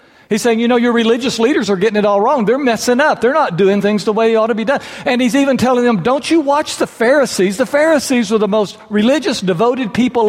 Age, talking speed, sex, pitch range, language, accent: 60-79, 255 wpm, male, 140-240 Hz, English, American